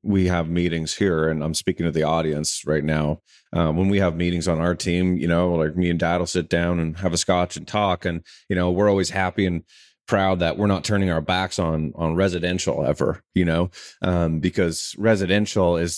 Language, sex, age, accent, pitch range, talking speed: English, male, 30-49, American, 85-105 Hz, 220 wpm